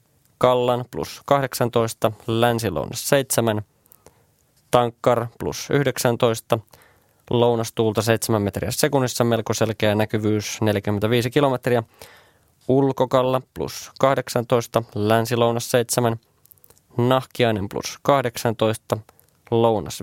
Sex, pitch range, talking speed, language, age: male, 110-125 Hz, 80 wpm, Finnish, 20-39